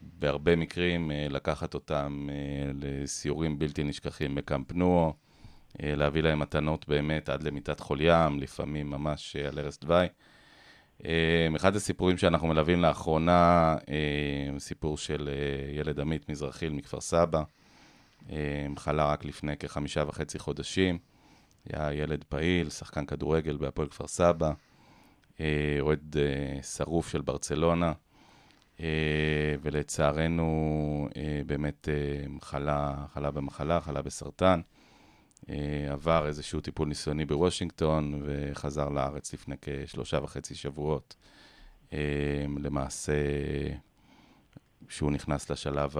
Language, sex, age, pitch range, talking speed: Hebrew, male, 30-49, 70-80 Hz, 105 wpm